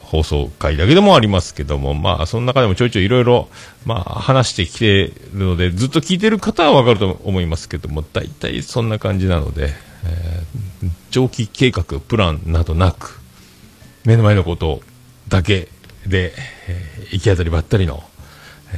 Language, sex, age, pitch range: Japanese, male, 40-59, 85-120 Hz